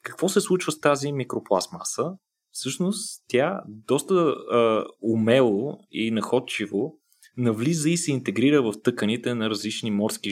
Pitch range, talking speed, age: 105-135 Hz, 130 wpm, 20-39